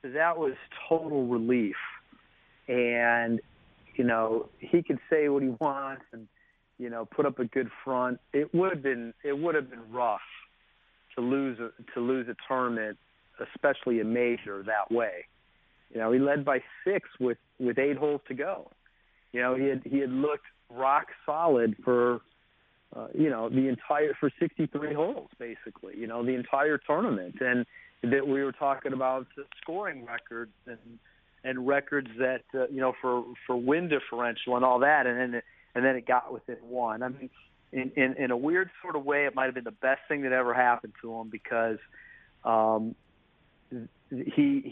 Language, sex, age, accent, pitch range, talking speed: English, male, 40-59, American, 120-140 Hz, 180 wpm